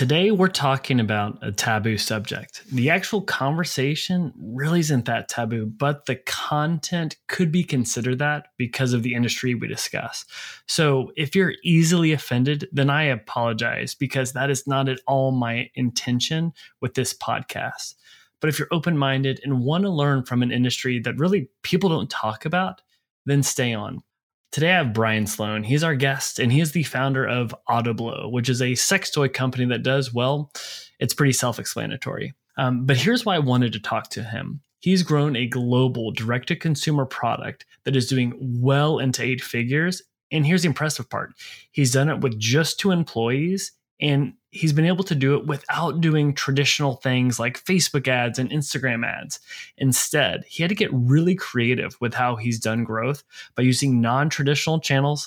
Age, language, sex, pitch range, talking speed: 20-39, English, male, 120-150 Hz, 175 wpm